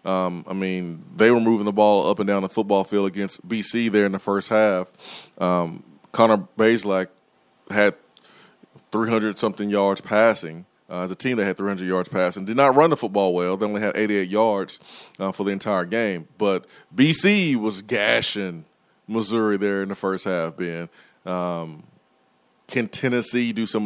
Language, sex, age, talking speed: English, male, 20-39, 175 wpm